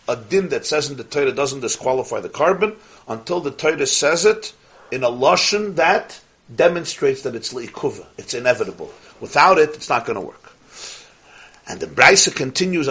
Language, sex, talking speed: English, male, 170 wpm